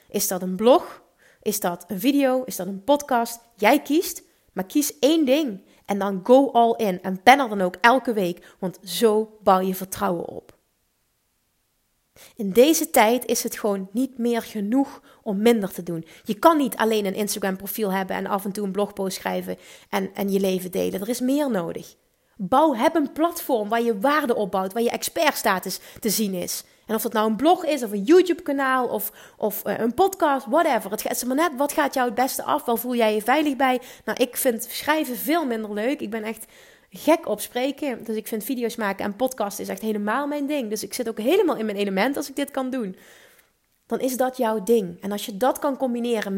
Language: Dutch